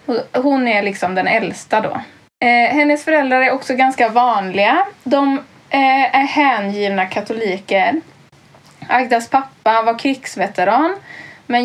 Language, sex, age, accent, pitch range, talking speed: Swedish, female, 20-39, native, 200-260 Hz, 120 wpm